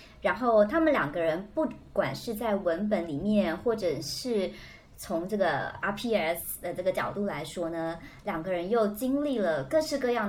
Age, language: 30-49, Chinese